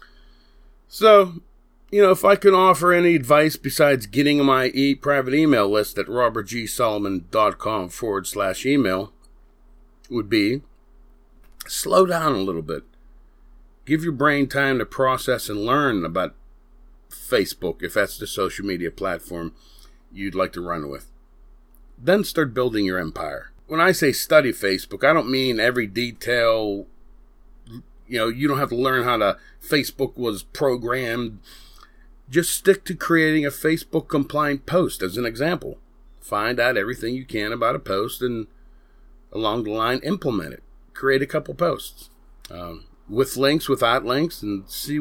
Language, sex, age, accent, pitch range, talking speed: English, male, 40-59, American, 95-145 Hz, 145 wpm